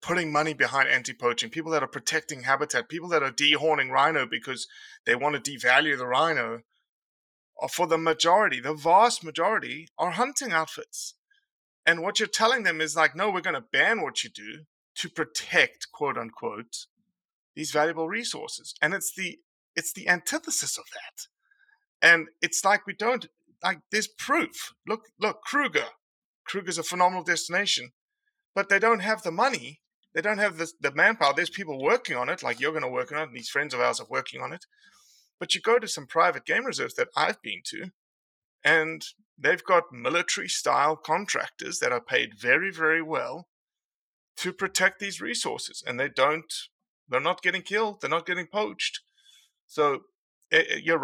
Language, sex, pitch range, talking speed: English, male, 160-240 Hz, 175 wpm